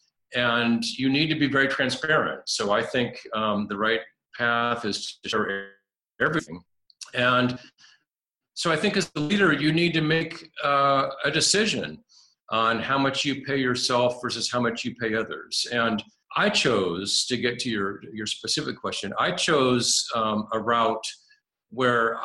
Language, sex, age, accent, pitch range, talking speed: English, male, 50-69, American, 110-135 Hz, 160 wpm